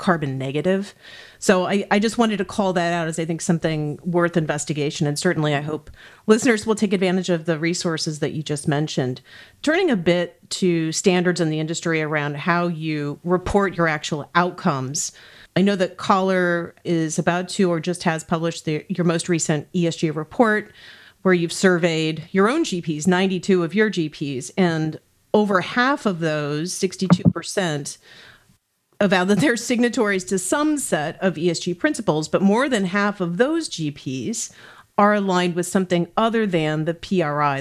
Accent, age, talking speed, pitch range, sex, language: American, 40-59, 165 wpm, 160-200 Hz, female, English